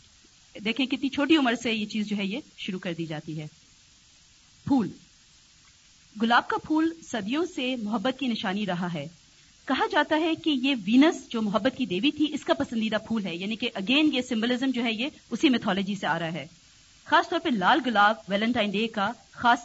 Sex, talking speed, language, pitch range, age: female, 200 wpm, Urdu, 200-270 Hz, 50-69